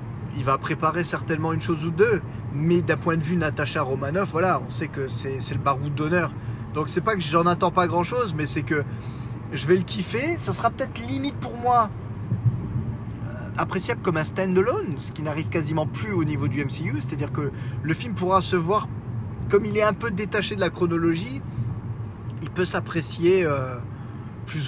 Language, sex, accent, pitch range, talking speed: French, male, French, 120-160 Hz, 190 wpm